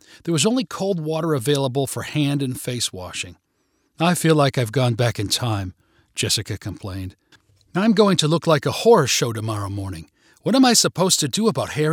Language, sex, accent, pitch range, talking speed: English, male, American, 115-170 Hz, 195 wpm